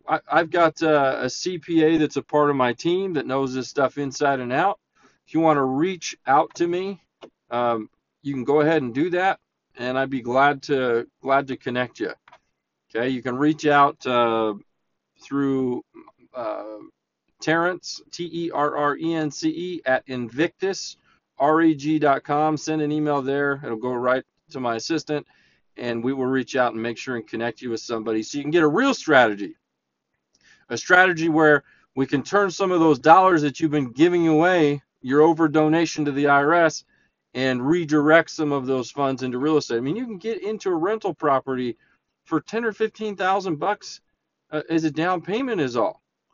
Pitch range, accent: 130-175 Hz, American